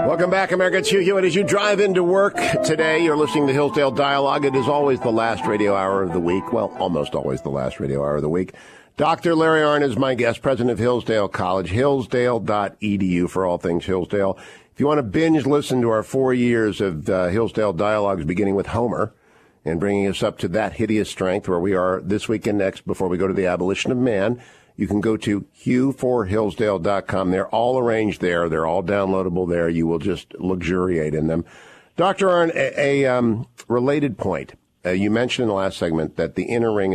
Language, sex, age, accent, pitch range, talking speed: English, male, 50-69, American, 90-130 Hz, 210 wpm